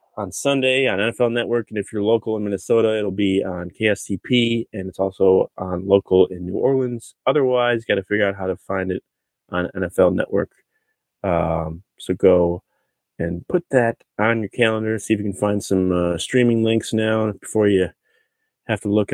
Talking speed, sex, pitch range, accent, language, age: 180 wpm, male, 95-115 Hz, American, English, 20-39